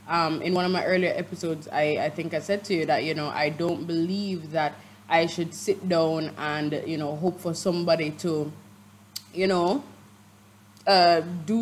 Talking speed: 185 wpm